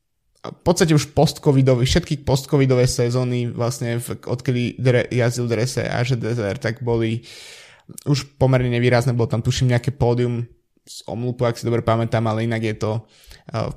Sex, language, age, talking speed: male, Slovak, 20-39, 155 wpm